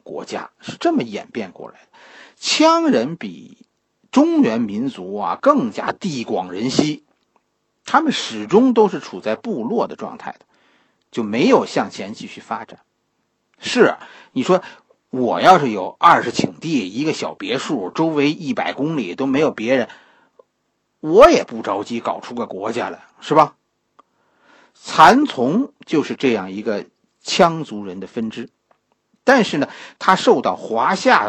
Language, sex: Chinese, male